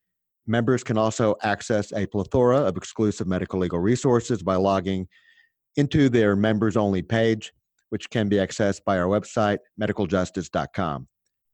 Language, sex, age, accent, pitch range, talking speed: English, male, 50-69, American, 95-115 Hz, 135 wpm